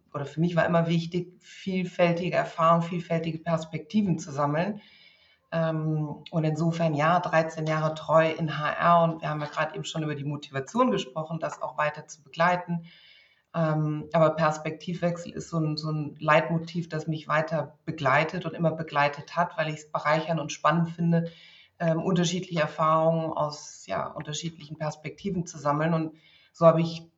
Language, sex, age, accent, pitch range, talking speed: German, female, 30-49, German, 150-170 Hz, 150 wpm